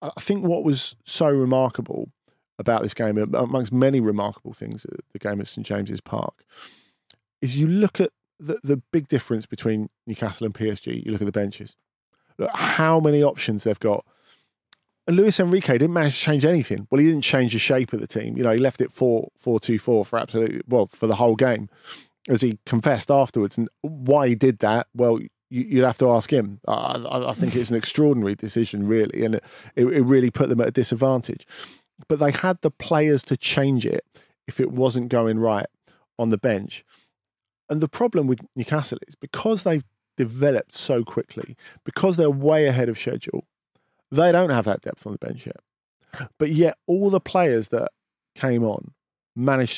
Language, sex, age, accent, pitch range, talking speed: English, male, 40-59, British, 115-150 Hz, 185 wpm